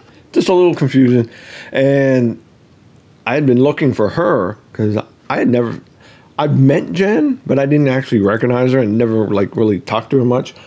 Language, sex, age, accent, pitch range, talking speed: English, male, 50-69, American, 110-135 Hz, 180 wpm